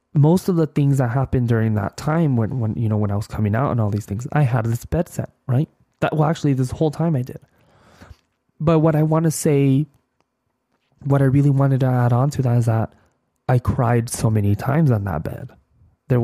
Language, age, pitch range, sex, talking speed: English, 20-39, 110-135 Hz, male, 230 wpm